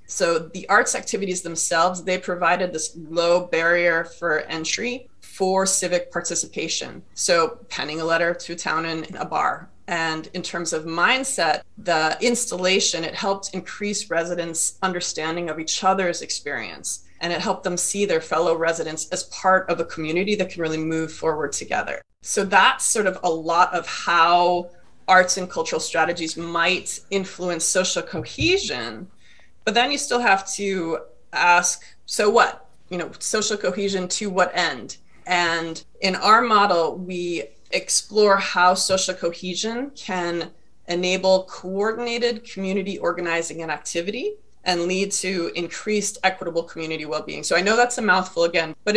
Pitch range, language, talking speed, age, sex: 170-195 Hz, English, 150 wpm, 20-39, female